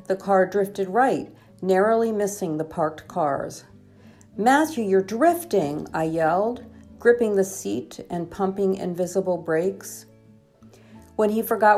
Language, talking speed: English, 120 wpm